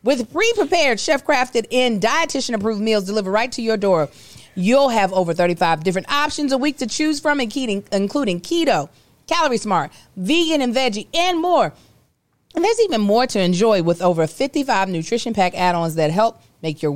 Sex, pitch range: female, 175-265 Hz